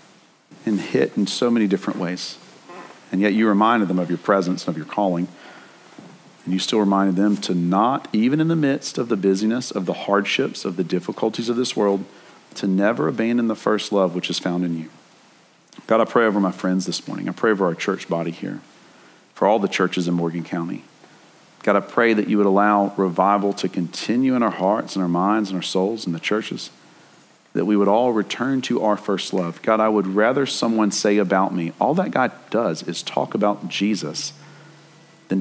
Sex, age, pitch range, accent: male, 40-59, 95-130 Hz, American